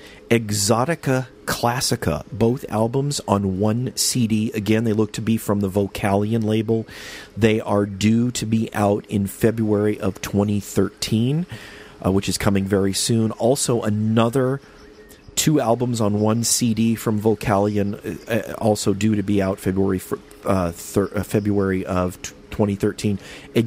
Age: 40-59